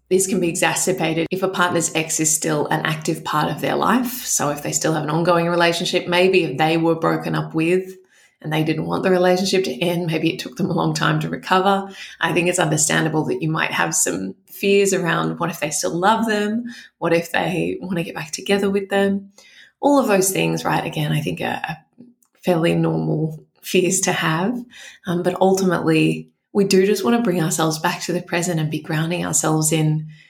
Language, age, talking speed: English, 20-39, 215 wpm